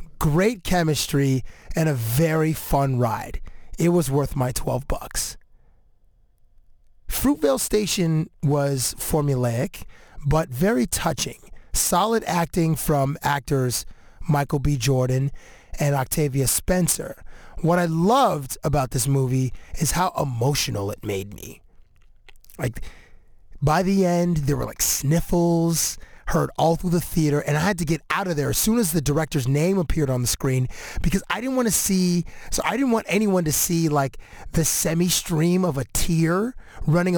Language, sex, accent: English, male, American